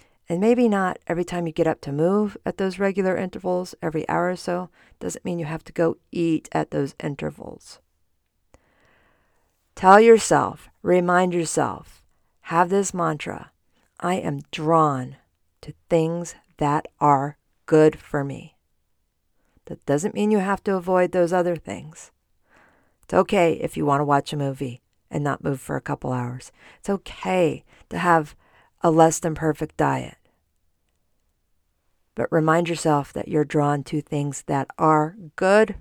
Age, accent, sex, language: 50-69, American, female, English